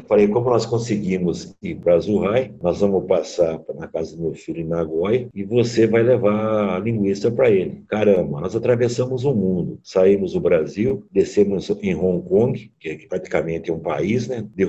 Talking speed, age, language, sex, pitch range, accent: 180 wpm, 60-79, Portuguese, male, 100-125 Hz, Brazilian